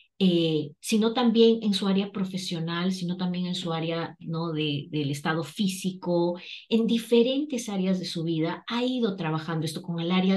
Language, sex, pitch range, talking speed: Spanish, female, 170-210 Hz, 175 wpm